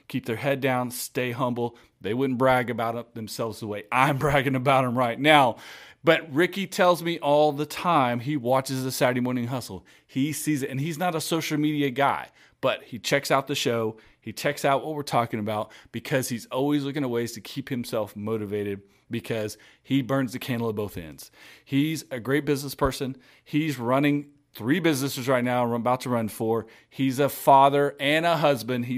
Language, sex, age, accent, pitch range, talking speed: English, male, 30-49, American, 115-140 Hz, 200 wpm